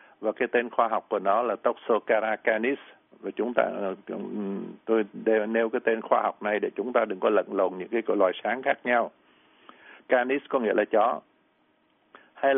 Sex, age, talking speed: male, 60-79, 190 wpm